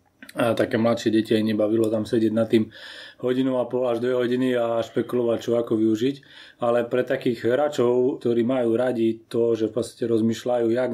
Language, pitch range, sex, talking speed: Slovak, 115-125 Hz, male, 185 wpm